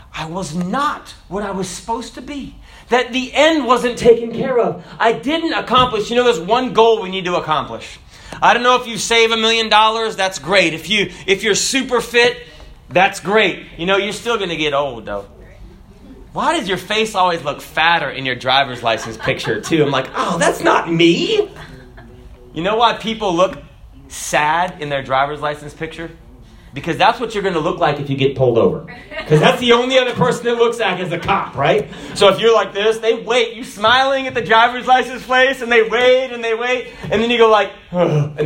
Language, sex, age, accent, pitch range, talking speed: English, male, 30-49, American, 165-250 Hz, 210 wpm